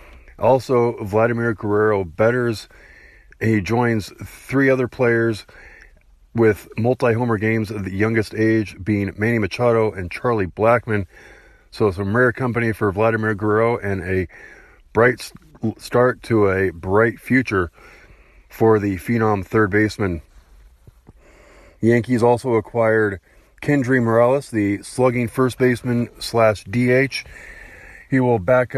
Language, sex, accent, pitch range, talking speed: English, male, American, 105-120 Hz, 120 wpm